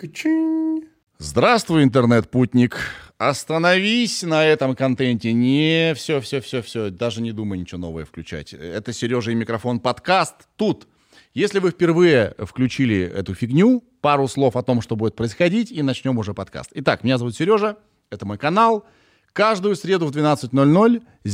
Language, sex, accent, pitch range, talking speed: Russian, male, native, 110-170 Hz, 140 wpm